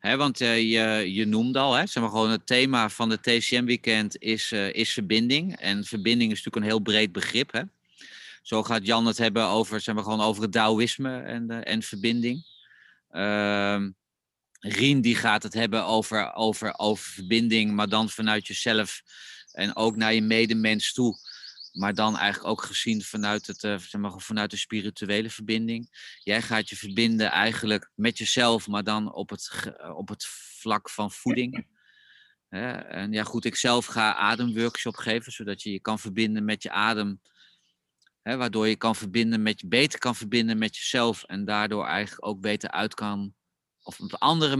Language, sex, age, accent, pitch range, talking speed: Dutch, male, 30-49, Dutch, 105-120 Hz, 165 wpm